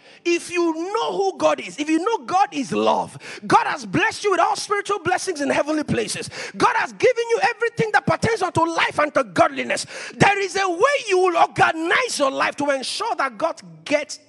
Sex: male